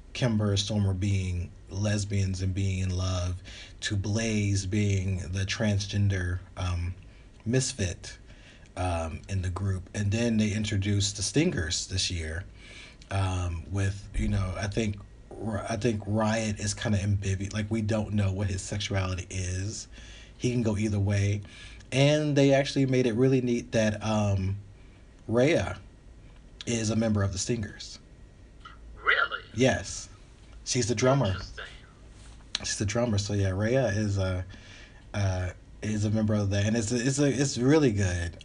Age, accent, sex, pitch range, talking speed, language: 30-49, American, male, 95-110 Hz, 150 wpm, English